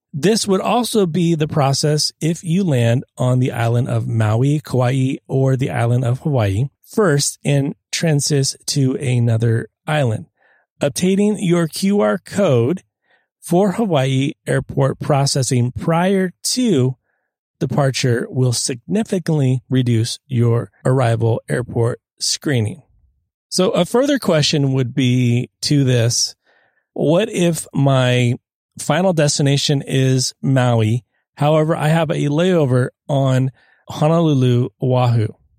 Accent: American